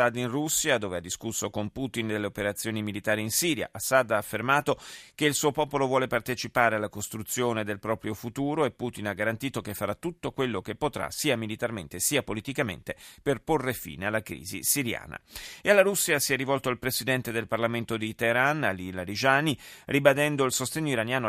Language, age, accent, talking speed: Italian, 40-59, native, 185 wpm